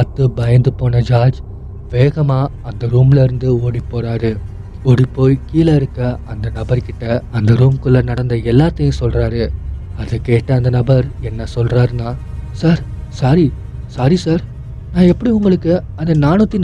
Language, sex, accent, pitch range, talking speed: Tamil, male, native, 115-155 Hz, 125 wpm